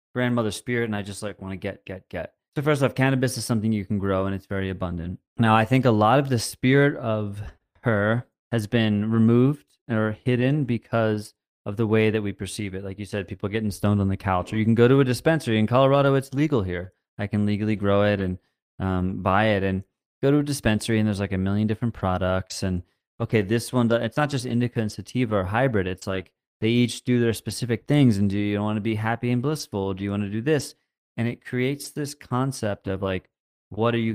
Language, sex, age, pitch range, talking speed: English, male, 30-49, 95-120 Hz, 235 wpm